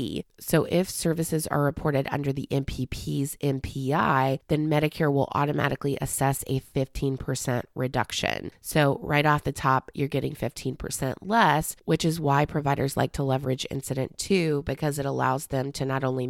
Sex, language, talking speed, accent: female, English, 155 wpm, American